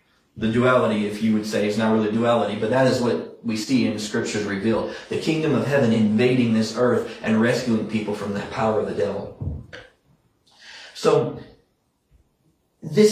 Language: English